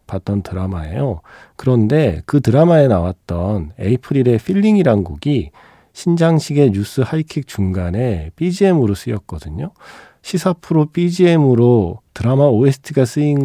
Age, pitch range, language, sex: 40-59, 95-130 Hz, Korean, male